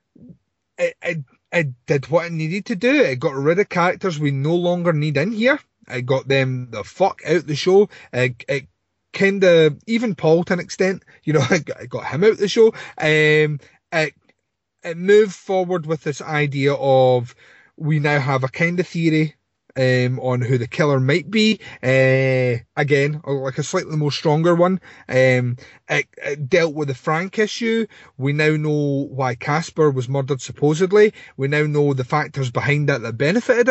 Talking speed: 175 wpm